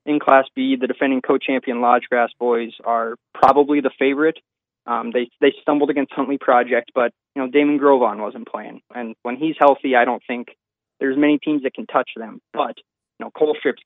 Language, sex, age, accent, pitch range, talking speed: English, male, 20-39, American, 120-150 Hz, 195 wpm